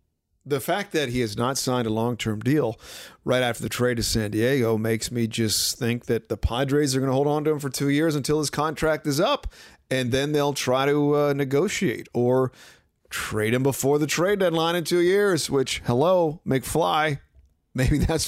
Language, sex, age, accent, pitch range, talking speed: English, male, 40-59, American, 115-155 Hz, 200 wpm